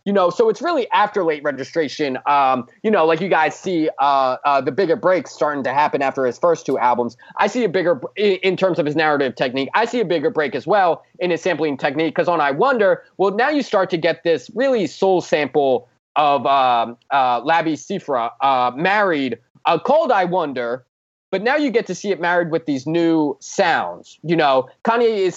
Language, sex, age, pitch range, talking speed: English, male, 20-39, 150-210 Hz, 215 wpm